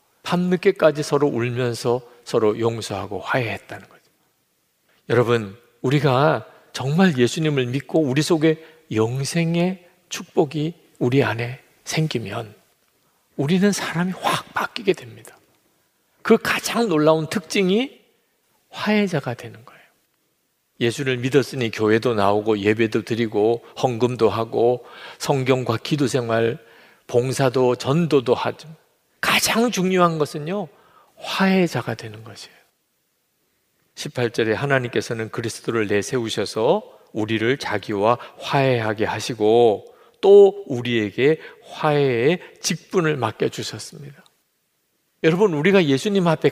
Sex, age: male, 40-59